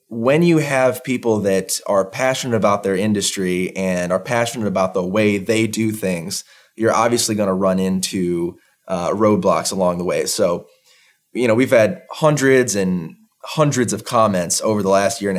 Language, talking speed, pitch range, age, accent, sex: English, 175 wpm, 95-125 Hz, 20-39, American, male